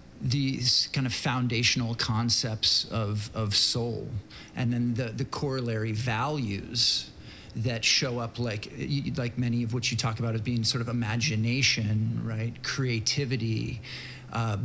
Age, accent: 40-59, American